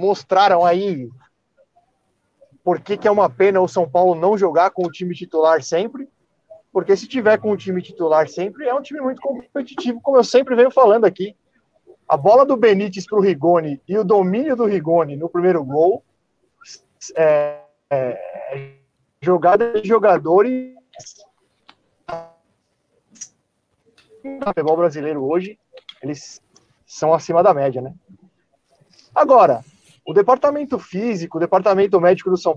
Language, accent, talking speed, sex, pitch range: Portuguese, Brazilian, 140 wpm, male, 160-235 Hz